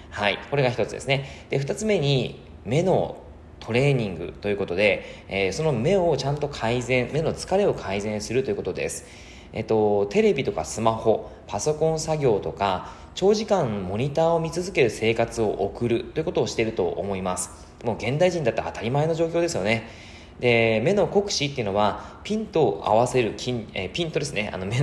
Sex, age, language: male, 20-39, Japanese